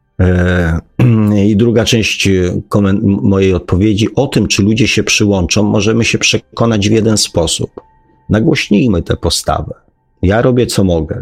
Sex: male